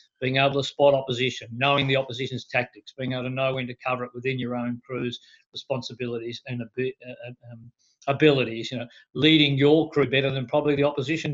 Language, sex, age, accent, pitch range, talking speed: English, male, 50-69, Australian, 125-145 Hz, 190 wpm